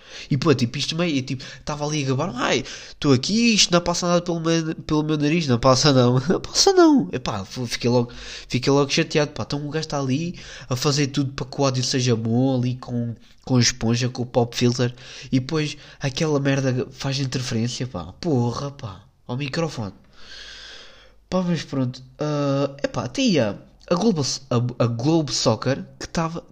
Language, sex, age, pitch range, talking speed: Portuguese, male, 20-39, 115-155 Hz, 180 wpm